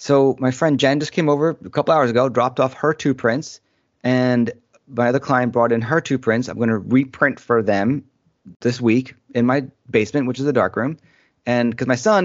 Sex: male